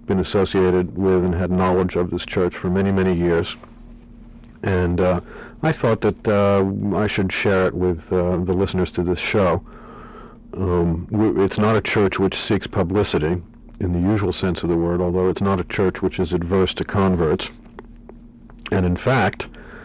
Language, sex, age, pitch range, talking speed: English, male, 50-69, 90-105 Hz, 175 wpm